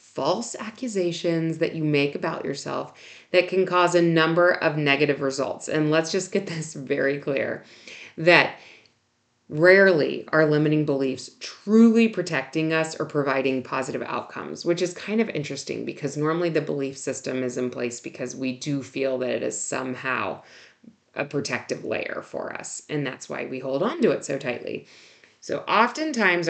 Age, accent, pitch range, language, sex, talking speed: 30-49, American, 145-185 Hz, English, female, 165 wpm